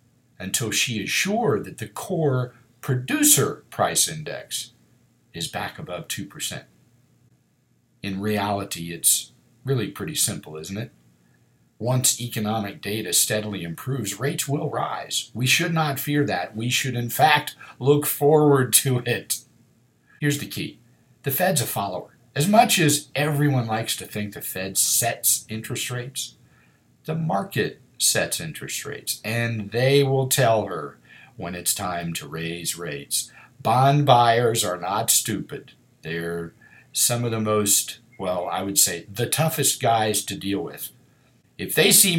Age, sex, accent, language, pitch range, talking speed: 50-69, male, American, English, 105-140 Hz, 145 wpm